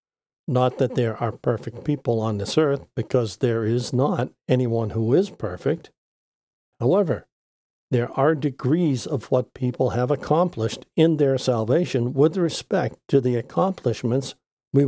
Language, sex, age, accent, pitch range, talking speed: English, male, 60-79, American, 120-150 Hz, 140 wpm